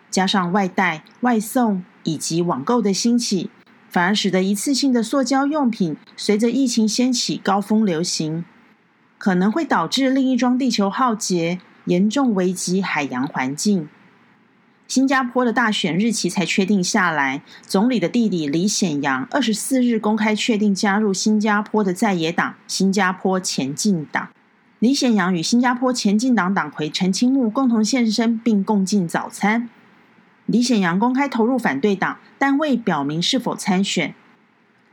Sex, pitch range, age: female, 190-245 Hz, 40-59